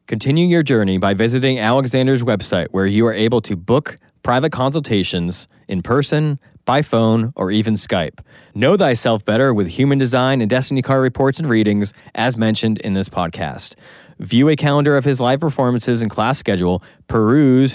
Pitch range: 100-130 Hz